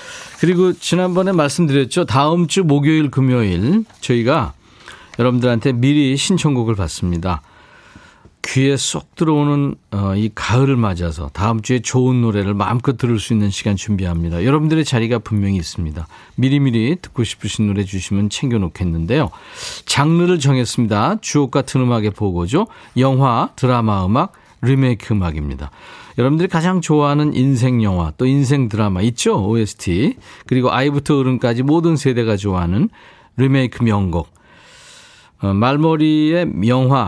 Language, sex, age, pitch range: Korean, male, 40-59, 100-140 Hz